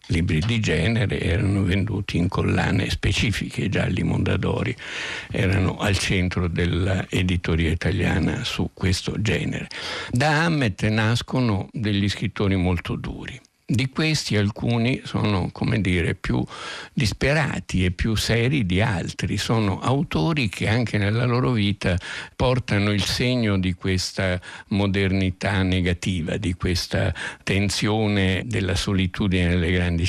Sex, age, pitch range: male, 60-79, 90-110 Hz